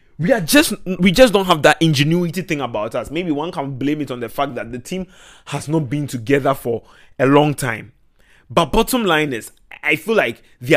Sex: male